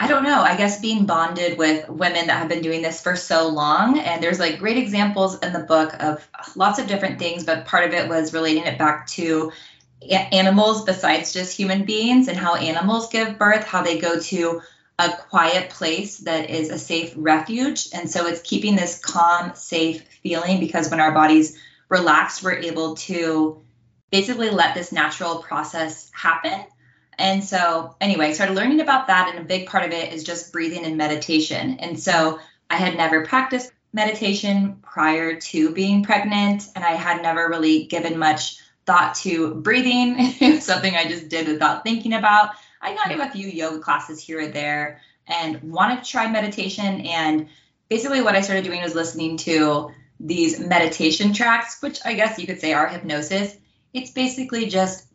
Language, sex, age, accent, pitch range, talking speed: English, female, 20-39, American, 160-205 Hz, 185 wpm